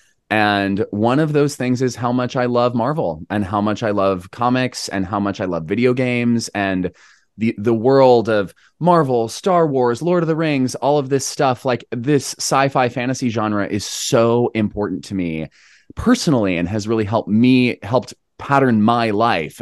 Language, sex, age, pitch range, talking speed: English, male, 20-39, 100-135 Hz, 185 wpm